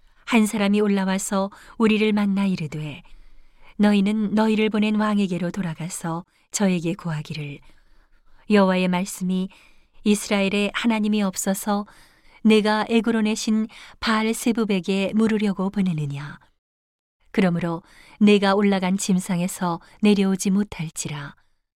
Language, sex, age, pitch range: Korean, female, 40-59, 180-215 Hz